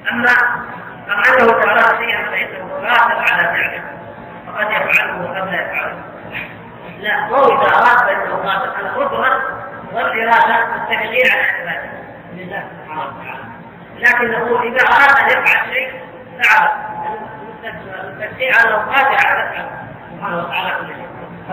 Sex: female